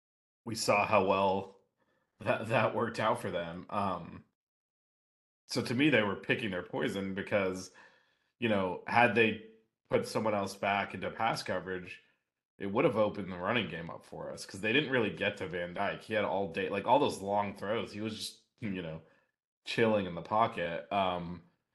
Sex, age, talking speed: male, 30-49, 190 wpm